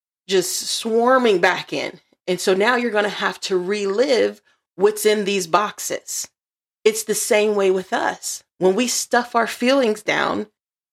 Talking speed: 160 wpm